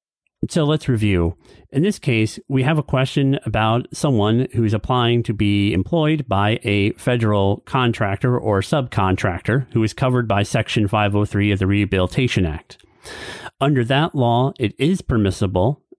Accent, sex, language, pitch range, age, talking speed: American, male, English, 100-130 Hz, 40-59, 150 wpm